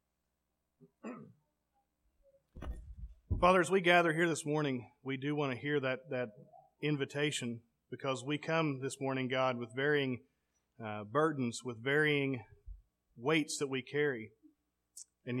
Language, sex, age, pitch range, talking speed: English, male, 40-59, 125-150 Hz, 125 wpm